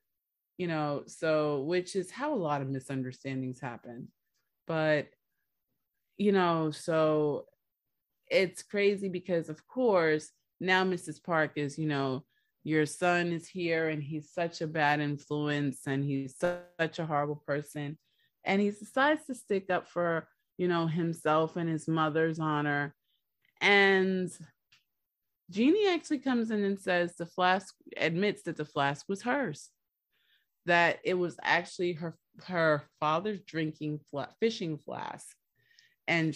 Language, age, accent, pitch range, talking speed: English, 30-49, American, 145-180 Hz, 135 wpm